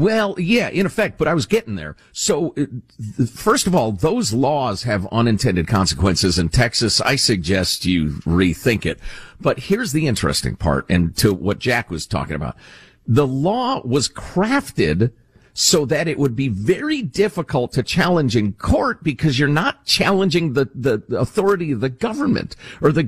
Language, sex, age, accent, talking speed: English, male, 50-69, American, 165 wpm